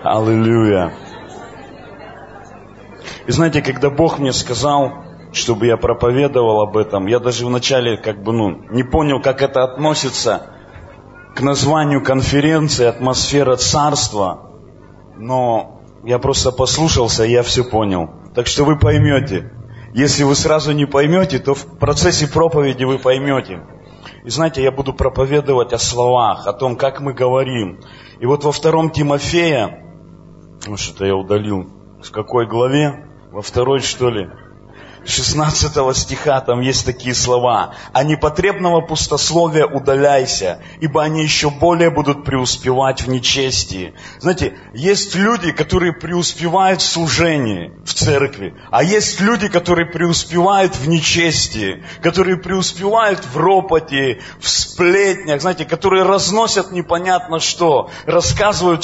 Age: 30-49